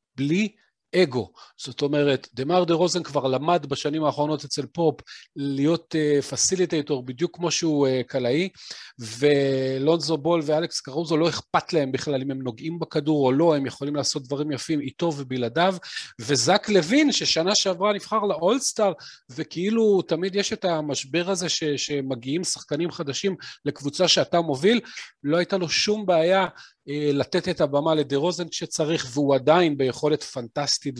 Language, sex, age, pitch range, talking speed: Hebrew, male, 40-59, 130-175 Hz, 145 wpm